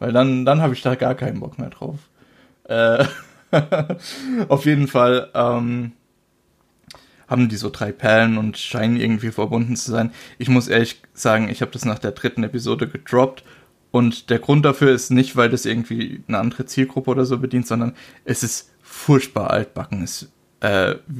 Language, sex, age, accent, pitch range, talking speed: German, male, 20-39, German, 115-135 Hz, 175 wpm